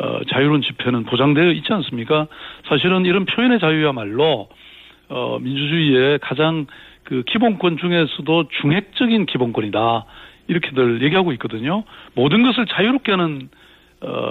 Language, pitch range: Korean, 130-175 Hz